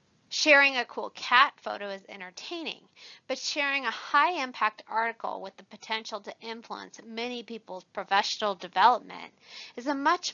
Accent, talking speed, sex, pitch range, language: American, 145 wpm, female, 200-275 Hz, English